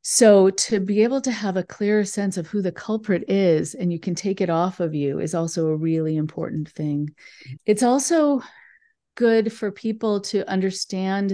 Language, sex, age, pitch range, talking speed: English, female, 40-59, 160-195 Hz, 185 wpm